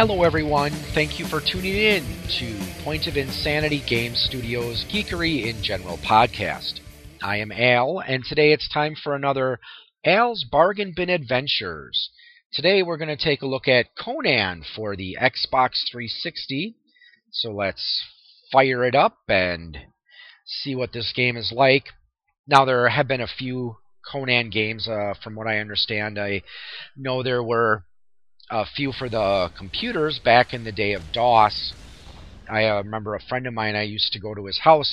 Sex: male